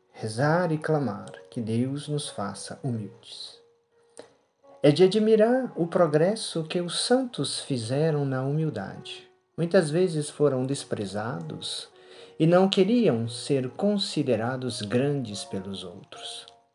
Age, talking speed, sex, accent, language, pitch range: 50-69, 110 wpm, male, Brazilian, Portuguese, 110-180 Hz